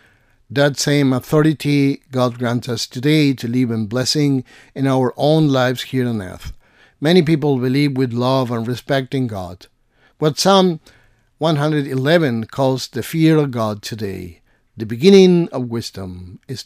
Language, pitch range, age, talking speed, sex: English, 110-135 Hz, 50-69, 150 wpm, male